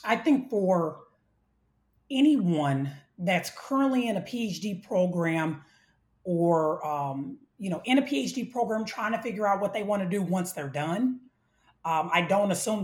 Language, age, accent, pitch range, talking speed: English, 30-49, American, 165-220 Hz, 160 wpm